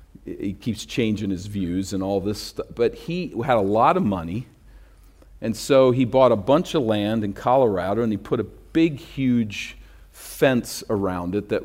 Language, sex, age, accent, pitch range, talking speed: English, male, 50-69, American, 95-120 Hz, 185 wpm